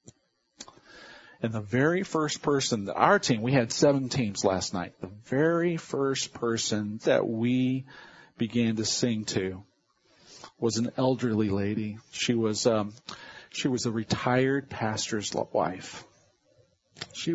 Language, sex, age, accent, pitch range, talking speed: English, male, 40-59, American, 115-140 Hz, 130 wpm